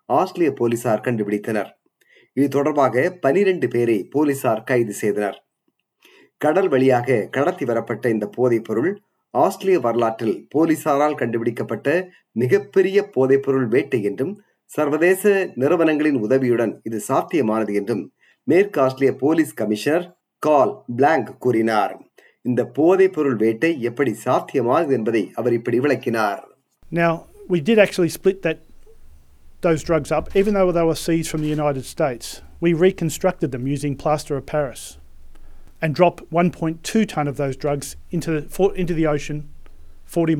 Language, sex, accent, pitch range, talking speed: Tamil, male, native, 125-165 Hz, 100 wpm